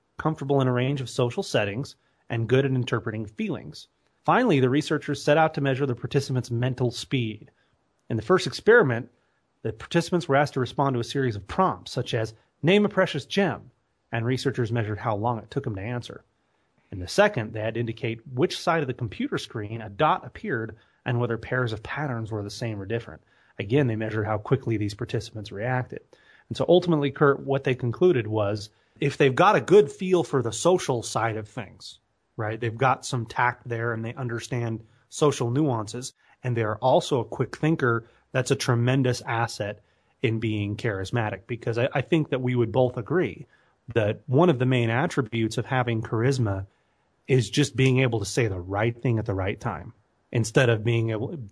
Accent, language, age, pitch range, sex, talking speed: American, English, 30-49, 110-135 Hz, male, 195 wpm